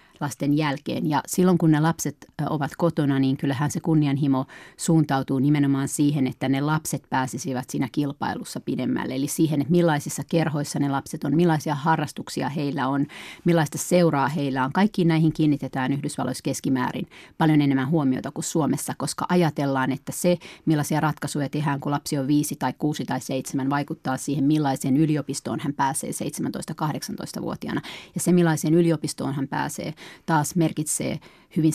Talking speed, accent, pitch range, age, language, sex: 150 wpm, native, 140-160 Hz, 30-49, Finnish, female